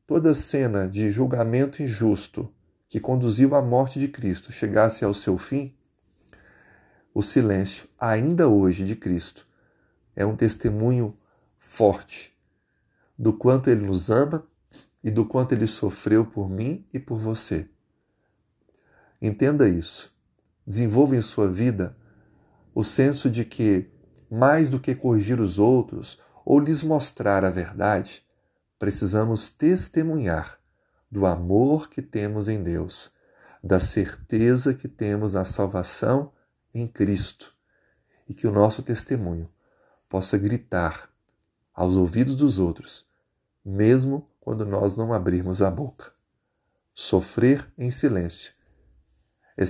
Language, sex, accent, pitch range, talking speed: Portuguese, male, Brazilian, 100-130 Hz, 120 wpm